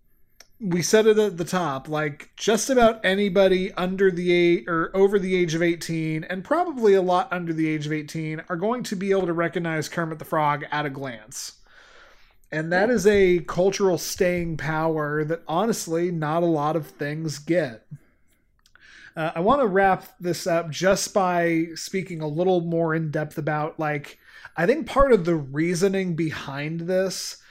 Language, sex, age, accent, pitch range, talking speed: English, male, 30-49, American, 150-185 Hz, 175 wpm